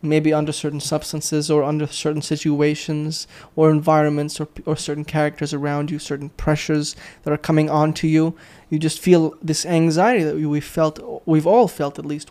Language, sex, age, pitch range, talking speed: English, male, 20-39, 150-180 Hz, 180 wpm